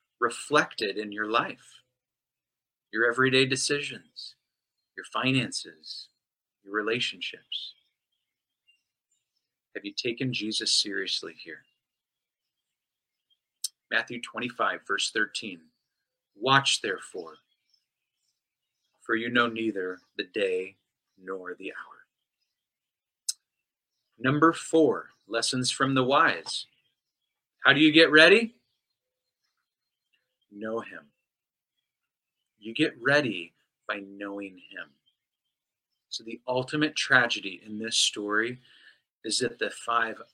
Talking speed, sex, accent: 90 wpm, male, American